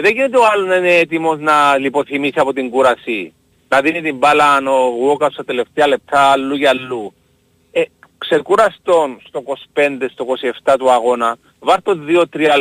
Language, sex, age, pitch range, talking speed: Greek, male, 40-59, 140-200 Hz, 160 wpm